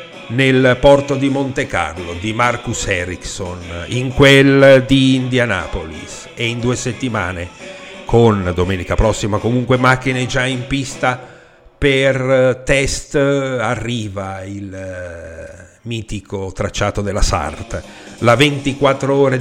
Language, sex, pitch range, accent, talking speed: Italian, male, 100-130 Hz, native, 110 wpm